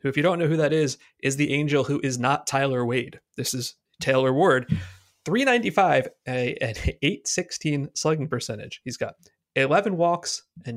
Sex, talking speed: male, 165 wpm